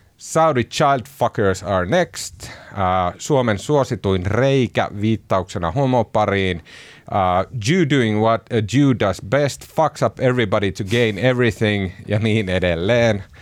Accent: native